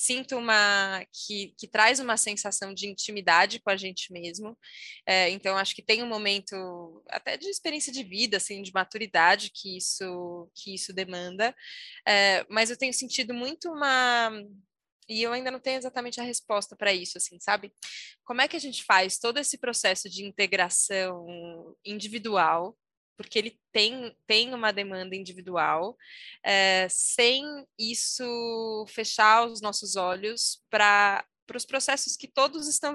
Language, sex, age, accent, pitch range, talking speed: Portuguese, female, 20-39, Brazilian, 195-245 Hz, 145 wpm